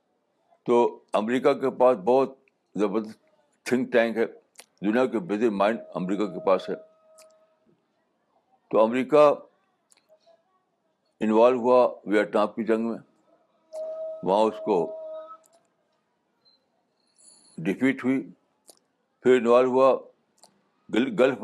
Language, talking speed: Urdu, 100 wpm